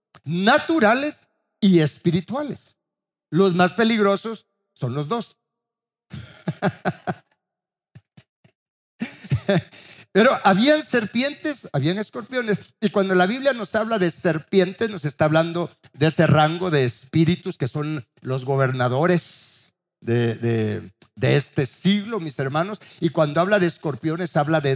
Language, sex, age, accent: Spanish, male, 50-69, Mexican